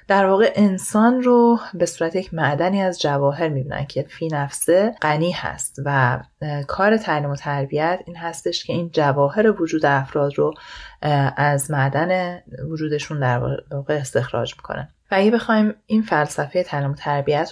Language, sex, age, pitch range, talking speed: Persian, female, 30-49, 145-185 Hz, 150 wpm